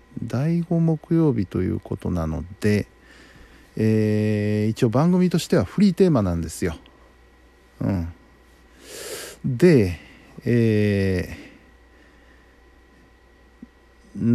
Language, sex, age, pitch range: Japanese, male, 50-69, 85-135 Hz